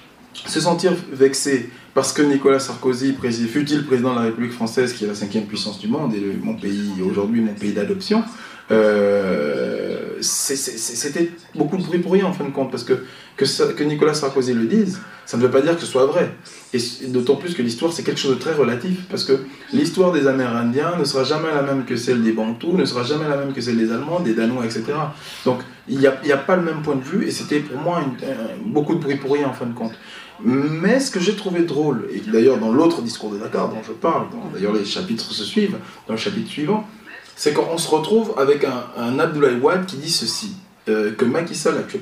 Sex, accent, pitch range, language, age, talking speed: male, French, 120-180 Hz, French, 20-39, 235 wpm